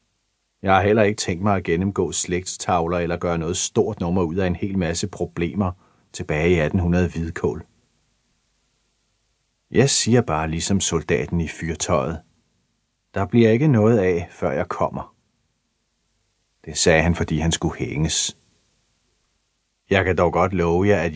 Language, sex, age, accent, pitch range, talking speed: Danish, male, 30-49, native, 80-100 Hz, 150 wpm